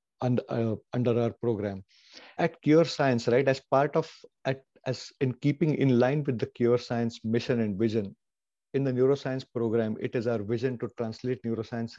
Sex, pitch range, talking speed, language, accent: male, 115-130 Hz, 180 wpm, English, Indian